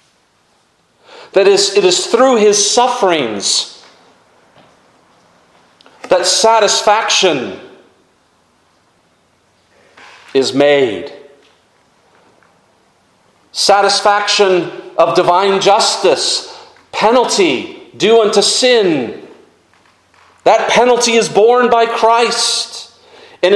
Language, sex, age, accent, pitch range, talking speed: English, male, 40-59, American, 175-235 Hz, 65 wpm